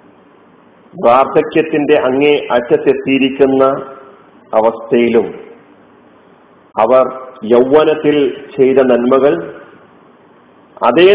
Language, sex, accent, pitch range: Malayalam, male, native, 135-160 Hz